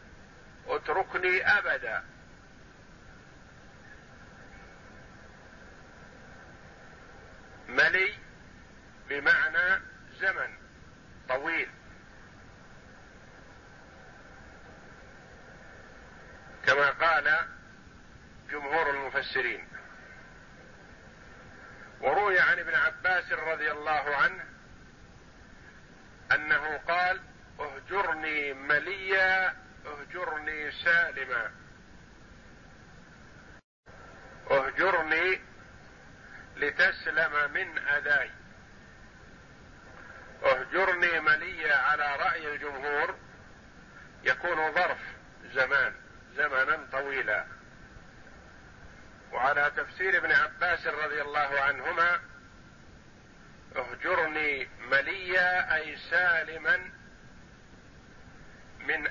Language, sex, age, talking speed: Arabic, male, 50-69, 50 wpm